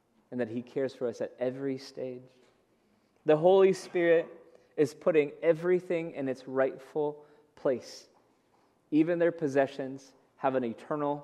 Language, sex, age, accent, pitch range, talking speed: English, male, 20-39, American, 130-165 Hz, 135 wpm